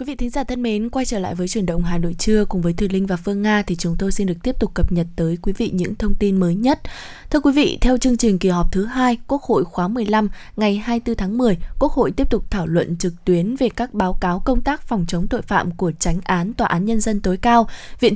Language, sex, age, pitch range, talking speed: Vietnamese, female, 20-39, 180-235 Hz, 280 wpm